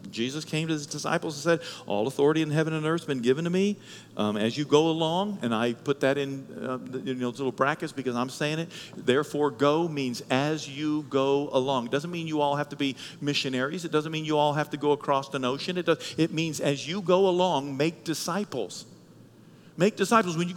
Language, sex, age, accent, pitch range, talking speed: English, male, 50-69, American, 140-215 Hz, 230 wpm